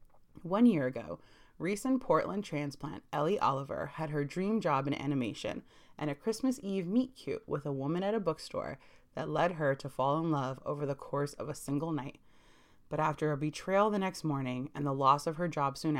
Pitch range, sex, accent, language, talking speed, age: 140-185 Hz, female, American, English, 200 wpm, 30-49